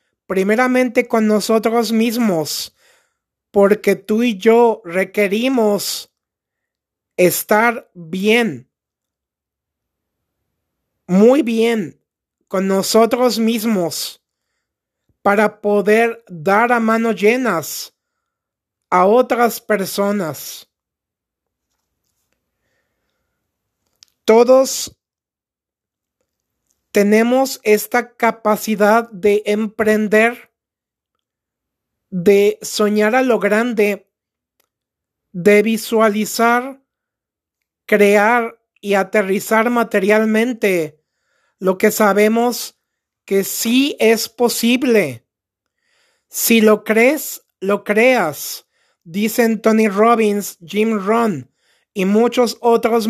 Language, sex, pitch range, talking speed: Spanish, male, 205-235 Hz, 70 wpm